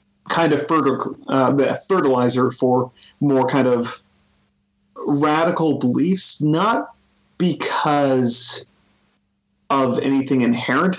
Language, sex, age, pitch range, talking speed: English, male, 30-49, 120-140 Hz, 80 wpm